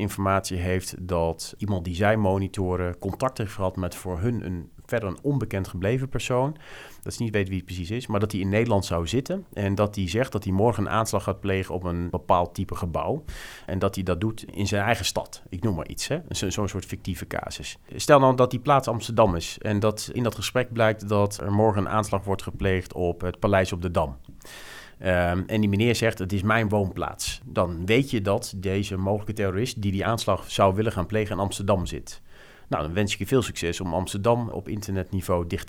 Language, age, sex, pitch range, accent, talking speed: Dutch, 40-59, male, 90-110 Hz, Dutch, 220 wpm